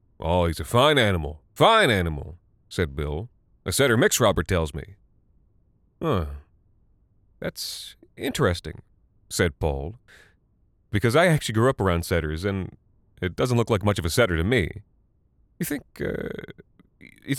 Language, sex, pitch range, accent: English, male, 85-110 Hz, American